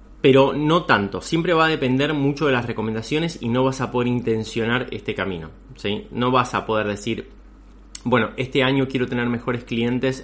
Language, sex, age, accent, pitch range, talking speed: Spanish, male, 20-39, Argentinian, 105-125 Hz, 180 wpm